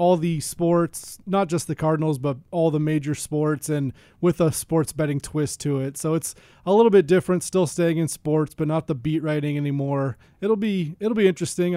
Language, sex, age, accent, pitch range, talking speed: English, male, 20-39, American, 150-175 Hz, 210 wpm